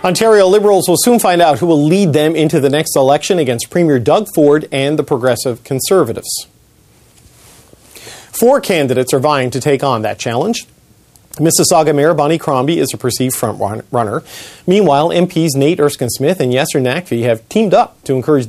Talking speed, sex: 175 wpm, male